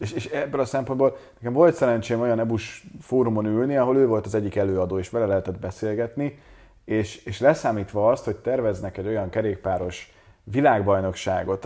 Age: 30-49